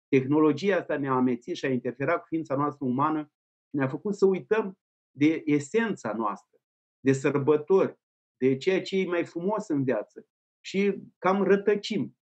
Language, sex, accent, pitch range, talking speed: Romanian, male, native, 130-190 Hz, 150 wpm